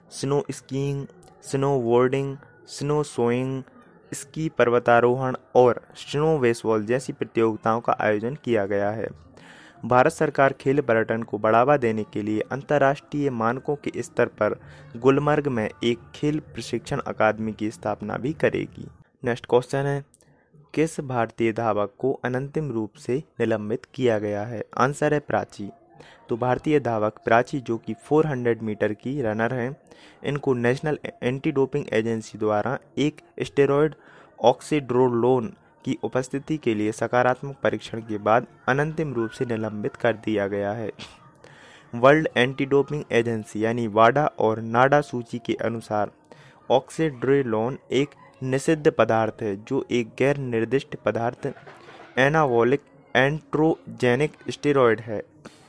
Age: 20-39